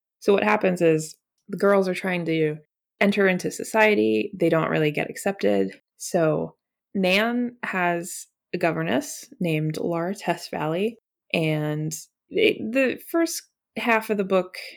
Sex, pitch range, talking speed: female, 155-205 Hz, 135 wpm